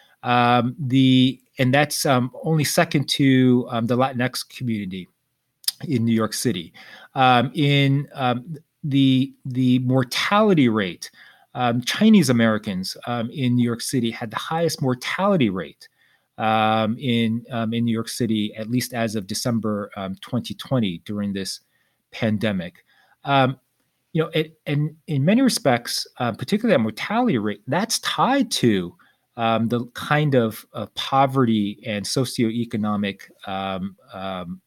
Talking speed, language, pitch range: 135 wpm, English, 105-135 Hz